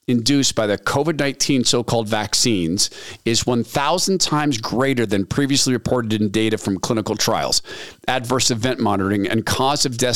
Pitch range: 110-140 Hz